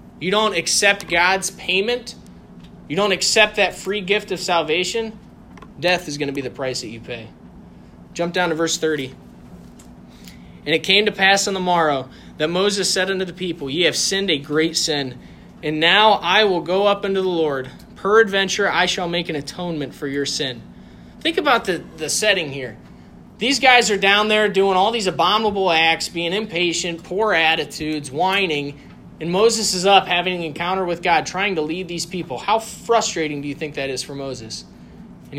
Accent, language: American, English